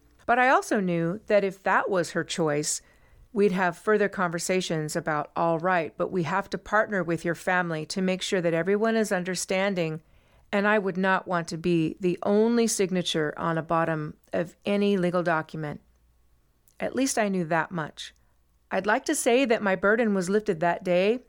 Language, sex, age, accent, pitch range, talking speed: English, female, 40-59, American, 165-215 Hz, 185 wpm